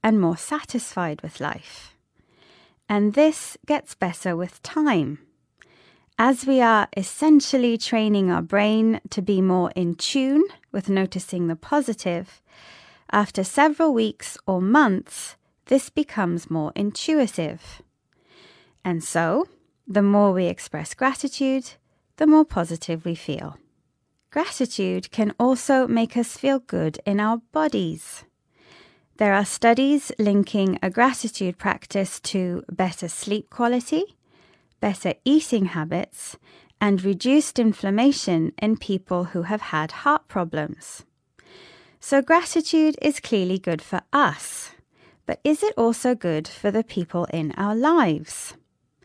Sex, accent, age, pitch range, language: female, British, 20-39, 180-270 Hz, Chinese